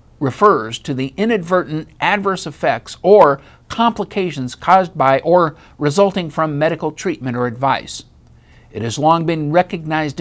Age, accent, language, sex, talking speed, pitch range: 50-69, American, English, male, 130 wpm, 135-190 Hz